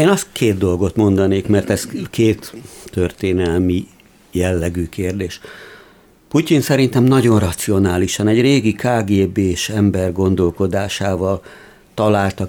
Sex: male